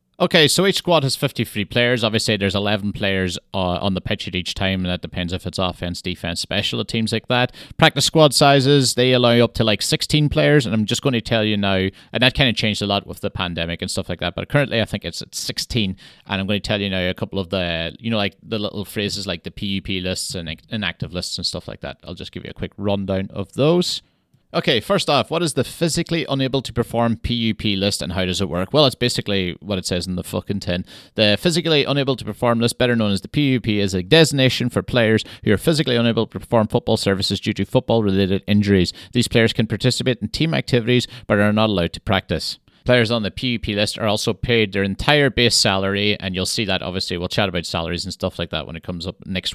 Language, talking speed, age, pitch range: English, 245 wpm, 30-49, 95-120 Hz